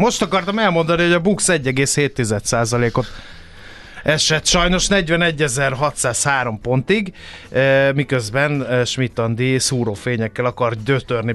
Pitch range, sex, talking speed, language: 120-155 Hz, male, 85 wpm, Hungarian